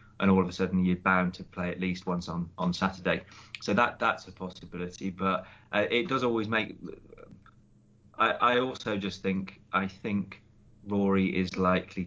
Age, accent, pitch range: 30-49, British, 90-100 Hz